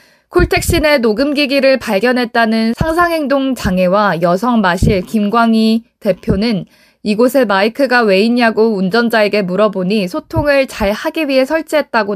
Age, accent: 20-39, native